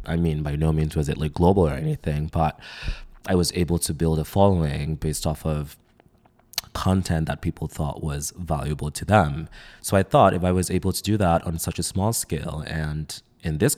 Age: 20-39